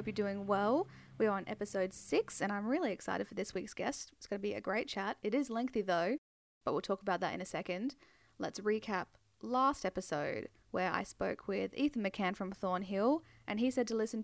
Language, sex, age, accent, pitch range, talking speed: English, female, 10-29, Australian, 190-255 Hz, 220 wpm